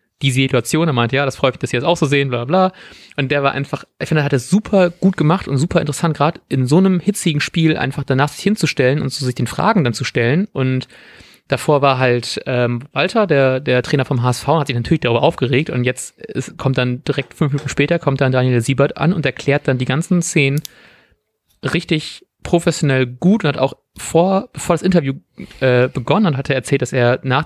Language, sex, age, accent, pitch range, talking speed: German, male, 30-49, German, 125-160 Hz, 230 wpm